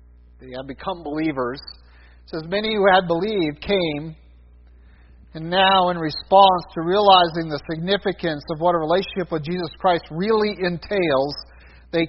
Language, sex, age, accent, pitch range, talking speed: English, male, 50-69, American, 155-195 Hz, 145 wpm